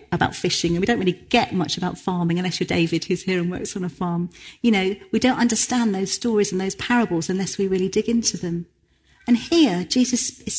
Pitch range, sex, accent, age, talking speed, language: 180-235 Hz, female, British, 40-59, 225 wpm, English